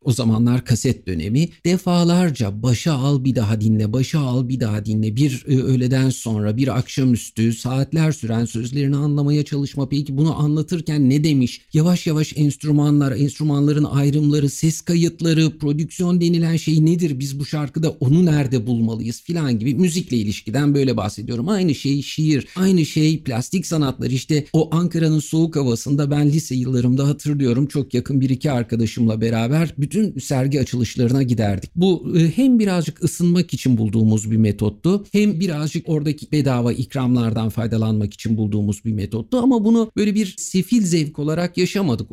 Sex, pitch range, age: male, 120-160 Hz, 50-69